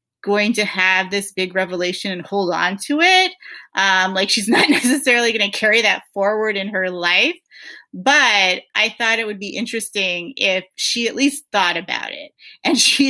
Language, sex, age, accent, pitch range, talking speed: English, female, 30-49, American, 185-235 Hz, 185 wpm